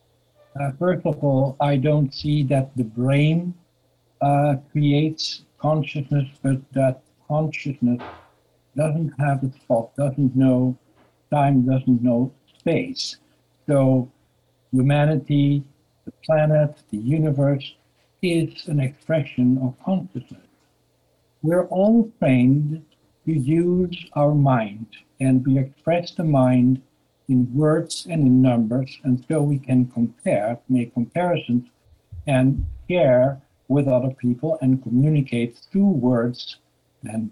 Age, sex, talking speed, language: 60-79, male, 115 wpm, English